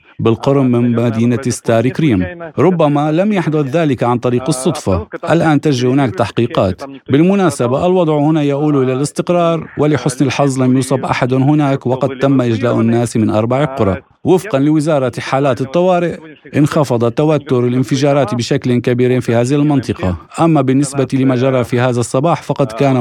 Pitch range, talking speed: 125-150 Hz, 145 wpm